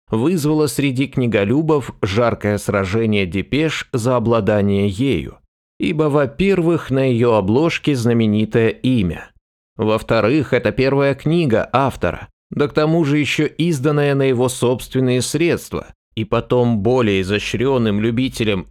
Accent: native